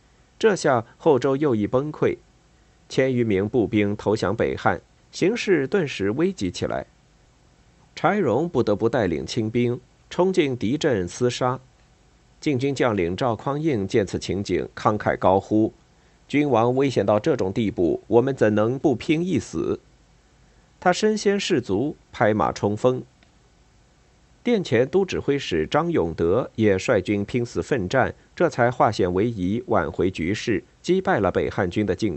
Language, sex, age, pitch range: Chinese, male, 50-69, 105-150 Hz